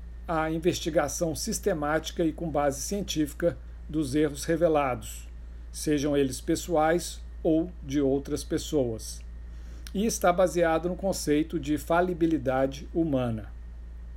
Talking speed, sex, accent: 105 wpm, male, Brazilian